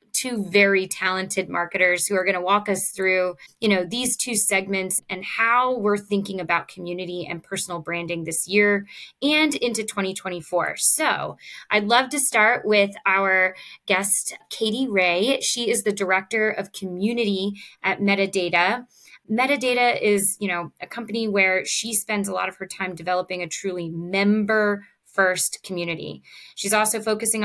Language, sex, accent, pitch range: English, female, American, 180-215 Hz